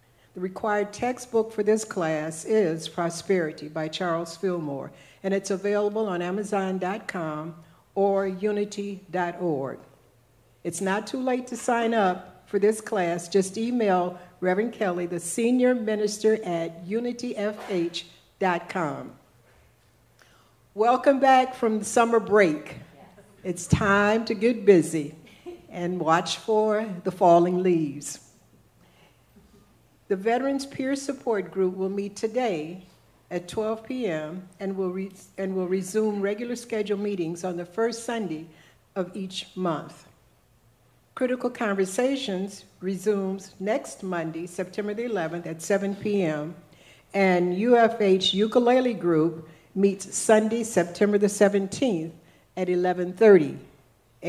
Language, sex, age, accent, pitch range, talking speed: English, female, 60-79, American, 170-220 Hz, 110 wpm